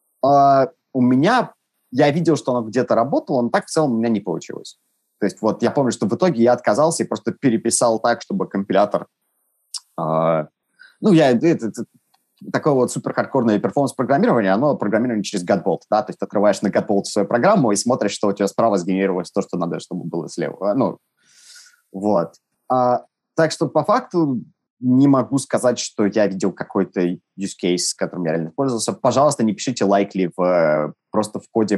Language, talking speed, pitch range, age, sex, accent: Russian, 185 wpm, 90-125 Hz, 20-39, male, native